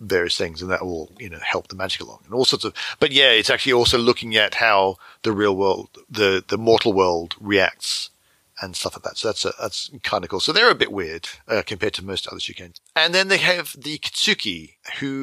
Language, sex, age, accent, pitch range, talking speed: English, male, 40-59, British, 95-130 Hz, 235 wpm